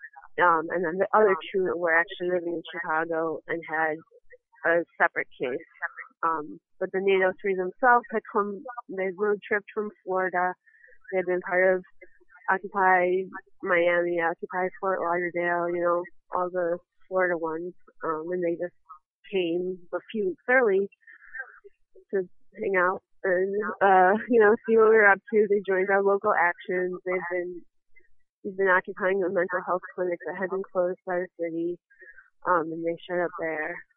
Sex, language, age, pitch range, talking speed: female, English, 20-39, 175-210 Hz, 165 wpm